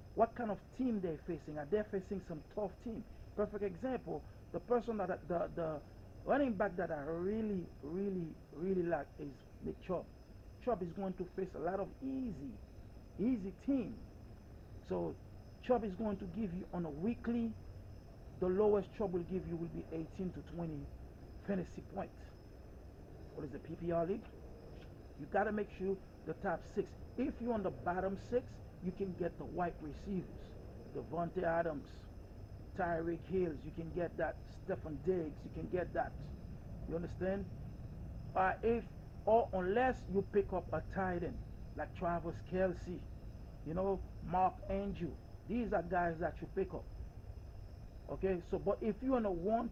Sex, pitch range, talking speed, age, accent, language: male, 140-200 Hz, 165 wpm, 50-69, Nigerian, English